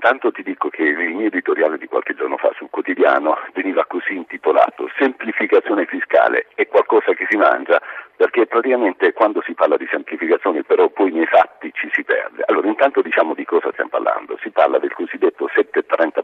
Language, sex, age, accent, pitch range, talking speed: Italian, male, 50-69, native, 345-440 Hz, 180 wpm